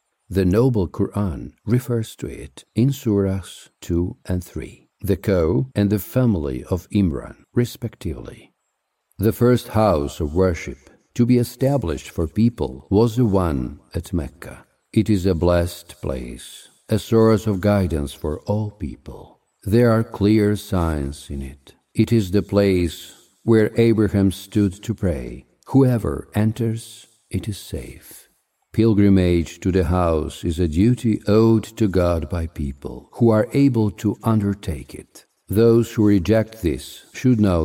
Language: English